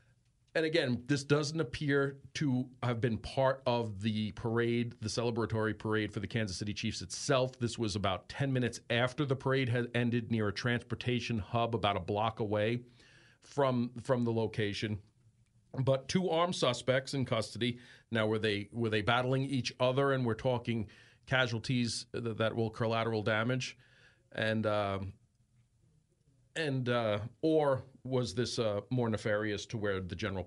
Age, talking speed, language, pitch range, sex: 40-59, 160 wpm, English, 110-125 Hz, male